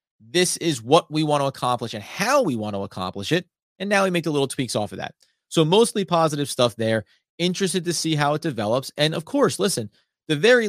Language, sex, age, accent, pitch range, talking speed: English, male, 30-49, American, 120-180 Hz, 230 wpm